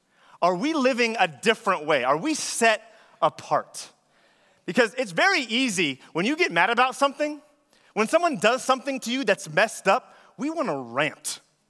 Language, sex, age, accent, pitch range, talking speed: English, male, 30-49, American, 175-240 Hz, 170 wpm